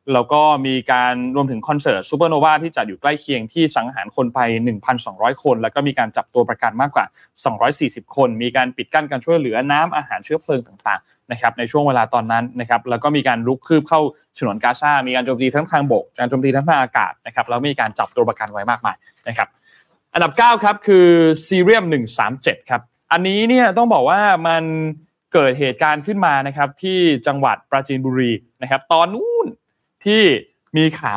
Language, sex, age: Thai, male, 20-39